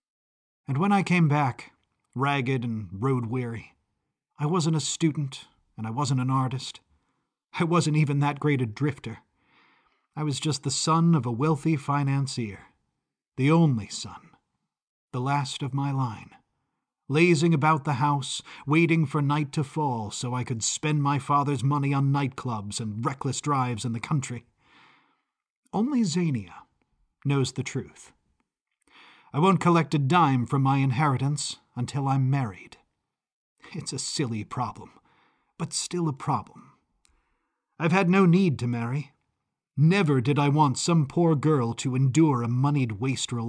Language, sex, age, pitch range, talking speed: English, male, 40-59, 125-155 Hz, 150 wpm